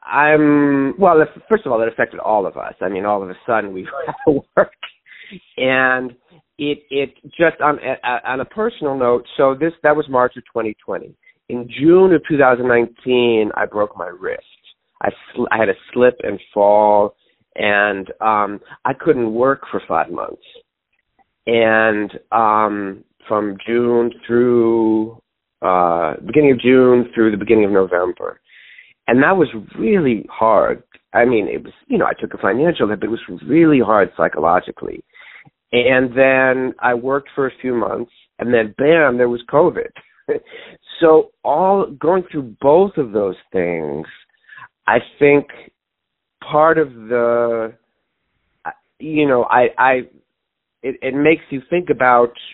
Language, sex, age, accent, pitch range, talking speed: English, male, 40-59, American, 115-145 Hz, 150 wpm